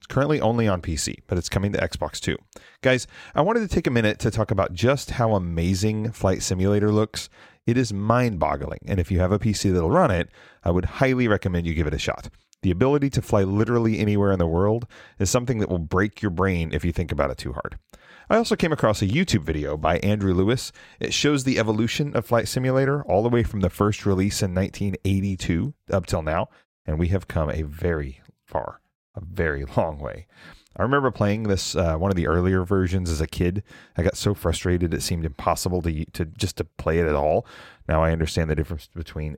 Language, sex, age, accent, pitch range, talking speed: English, male, 30-49, American, 85-110 Hz, 220 wpm